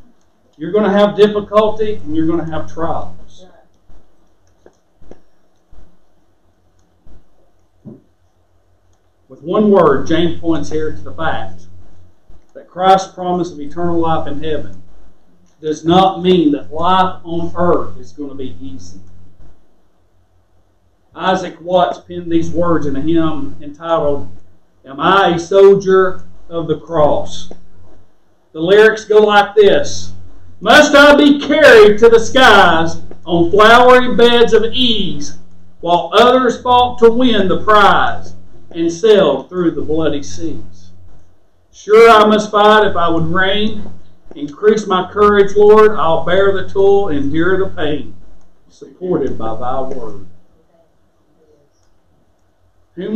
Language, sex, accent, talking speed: English, male, American, 125 wpm